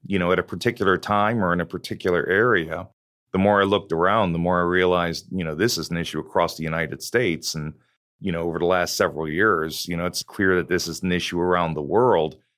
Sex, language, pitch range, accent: male, English, 85-105 Hz, American